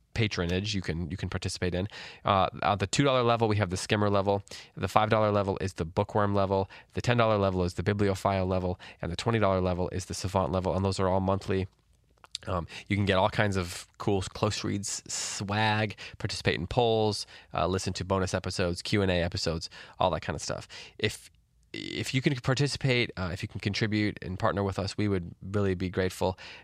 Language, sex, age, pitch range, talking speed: English, male, 20-39, 90-100 Hz, 200 wpm